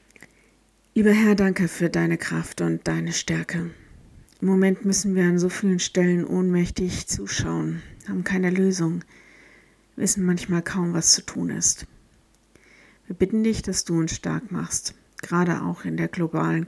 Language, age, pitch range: German, 50-69, 165-190 Hz